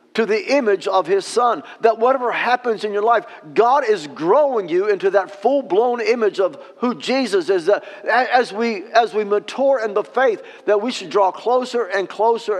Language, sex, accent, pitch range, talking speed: English, male, American, 185-275 Hz, 190 wpm